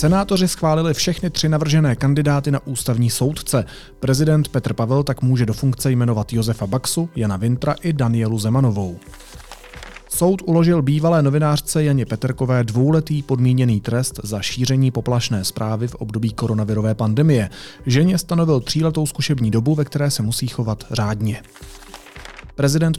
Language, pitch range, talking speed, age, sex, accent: Czech, 115-145 Hz, 140 wpm, 30-49, male, native